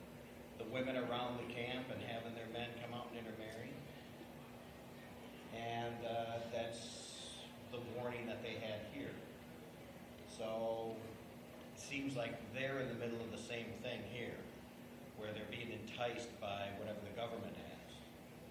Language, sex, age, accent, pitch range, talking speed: English, male, 50-69, American, 110-125 Hz, 140 wpm